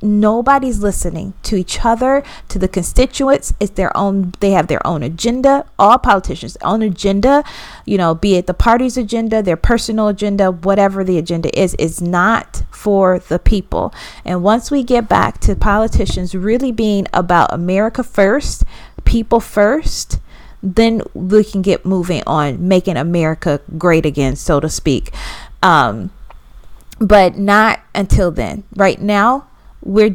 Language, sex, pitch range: English, female, 175-210 Hz